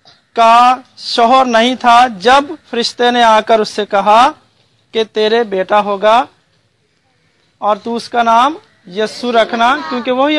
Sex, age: male, 40-59